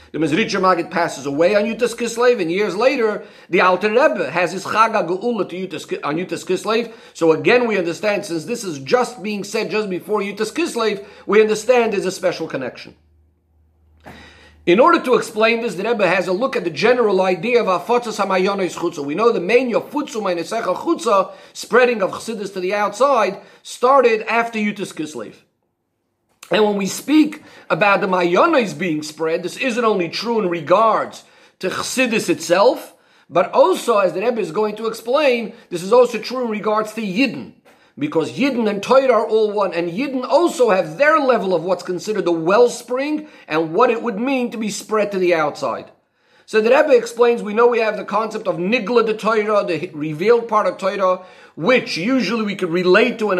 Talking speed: 185 wpm